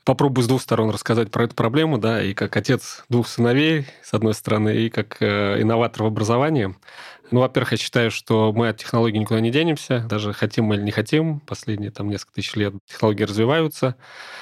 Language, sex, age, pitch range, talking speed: Russian, male, 30-49, 110-125 Hz, 190 wpm